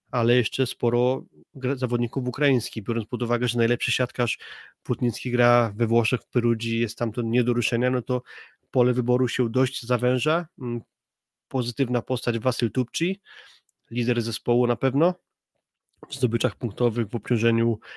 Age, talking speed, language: 20-39, 140 wpm, Polish